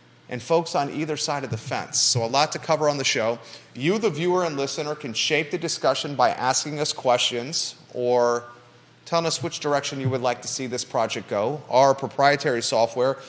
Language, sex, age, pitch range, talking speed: English, male, 30-49, 120-150 Hz, 205 wpm